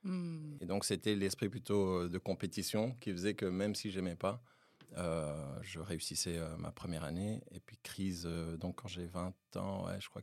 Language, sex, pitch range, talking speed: French, male, 90-105 Hz, 200 wpm